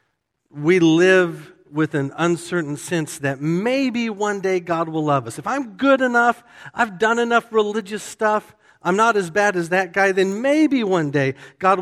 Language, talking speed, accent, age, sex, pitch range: English, 180 wpm, American, 50-69, male, 150-205 Hz